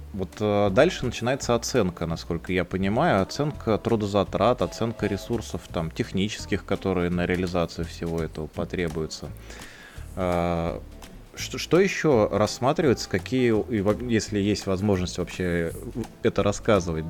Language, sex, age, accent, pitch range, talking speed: Russian, male, 20-39, native, 90-115 Hz, 105 wpm